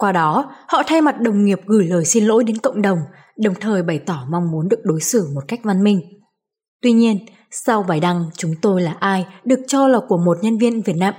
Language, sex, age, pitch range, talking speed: Vietnamese, female, 20-39, 180-235 Hz, 240 wpm